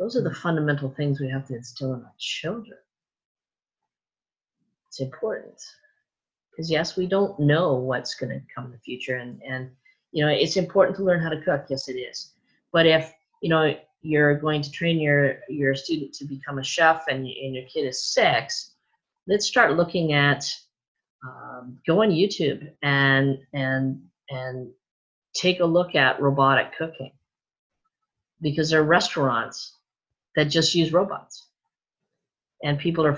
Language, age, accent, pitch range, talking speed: English, 40-59, American, 135-165 Hz, 160 wpm